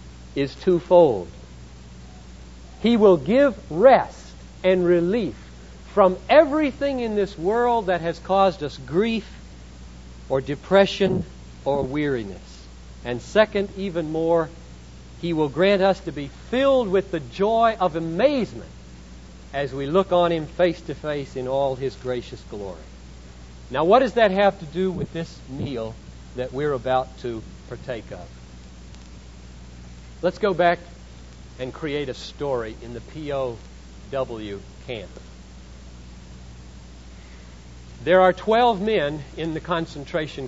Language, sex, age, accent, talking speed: English, male, 60-79, American, 125 wpm